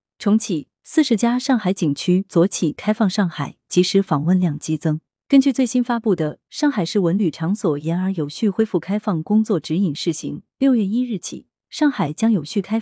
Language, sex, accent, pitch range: Chinese, female, native, 160-215 Hz